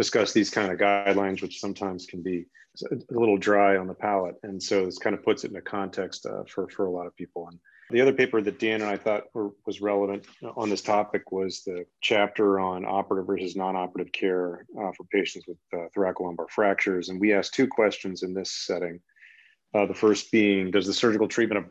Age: 30-49